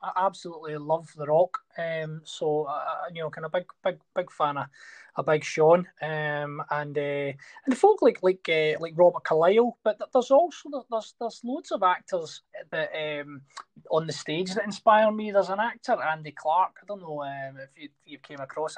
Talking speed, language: 200 wpm, English